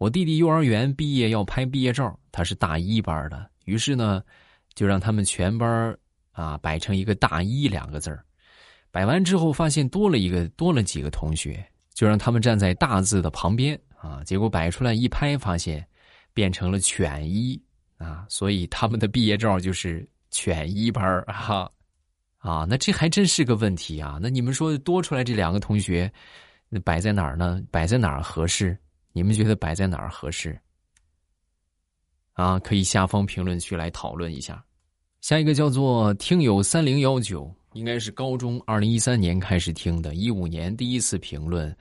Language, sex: Chinese, male